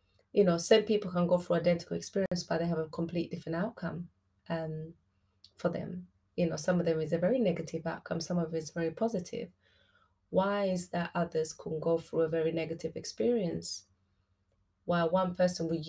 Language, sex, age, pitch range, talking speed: English, female, 20-39, 155-175 Hz, 190 wpm